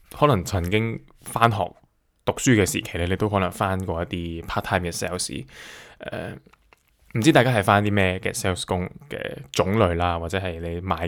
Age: 20-39